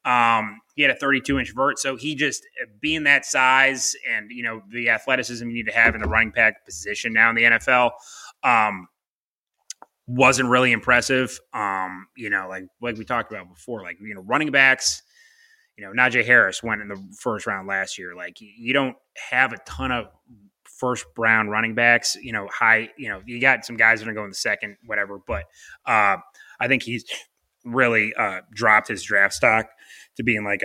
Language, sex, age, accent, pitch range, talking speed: English, male, 20-39, American, 100-125 Hz, 200 wpm